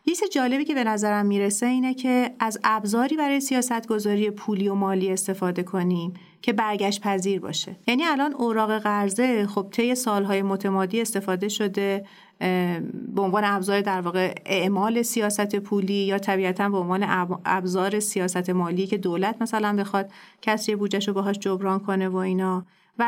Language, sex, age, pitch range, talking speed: Persian, female, 40-59, 190-230 Hz, 165 wpm